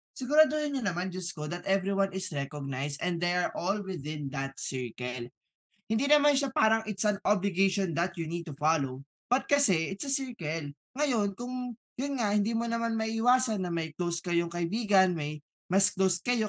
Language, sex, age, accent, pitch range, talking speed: Filipino, male, 20-39, native, 170-240 Hz, 180 wpm